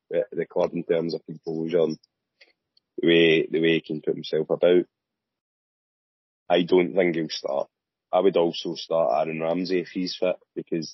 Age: 20-39